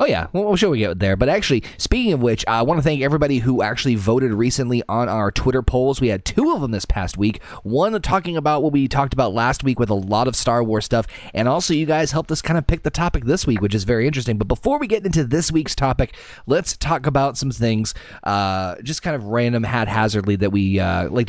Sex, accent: male, American